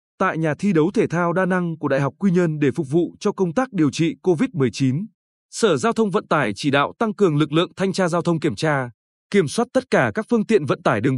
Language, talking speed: Vietnamese, 265 wpm